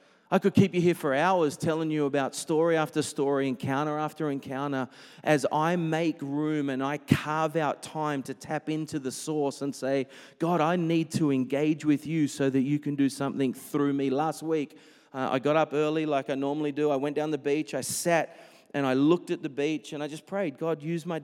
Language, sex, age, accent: English, male, 30-49, Australian